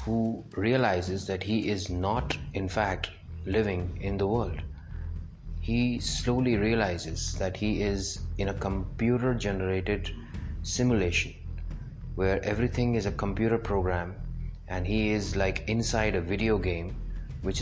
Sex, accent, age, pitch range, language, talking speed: male, Indian, 30-49, 90-110 Hz, English, 125 wpm